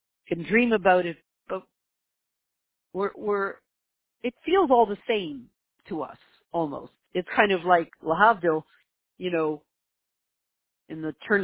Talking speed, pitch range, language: 130 wpm, 165-240 Hz, English